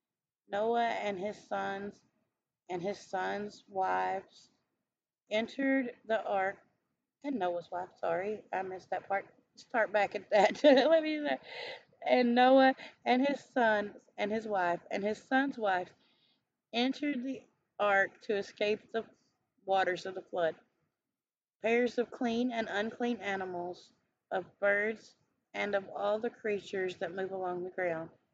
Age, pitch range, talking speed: 30-49, 190-225 Hz, 140 wpm